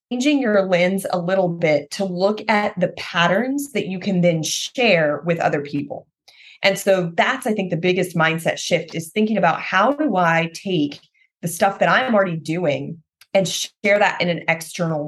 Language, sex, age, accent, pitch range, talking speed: English, female, 30-49, American, 170-235 Hz, 185 wpm